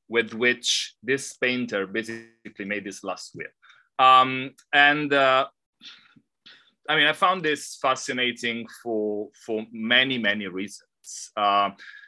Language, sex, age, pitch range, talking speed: English, male, 30-49, 105-135 Hz, 120 wpm